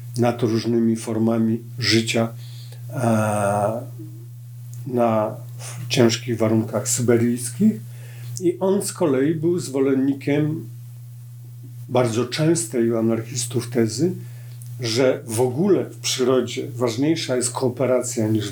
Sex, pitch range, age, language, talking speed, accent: male, 120-130 Hz, 50-69, Polish, 95 wpm, native